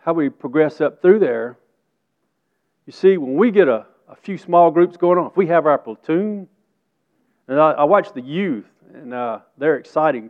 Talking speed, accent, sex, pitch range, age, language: 190 wpm, American, male, 135-175 Hz, 40-59, English